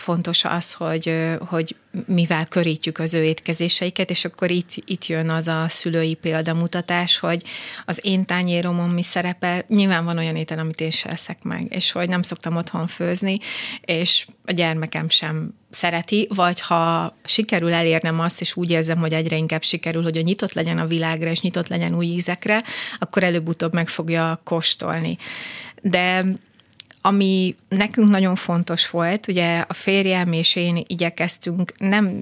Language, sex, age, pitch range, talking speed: Hungarian, female, 30-49, 165-180 Hz, 155 wpm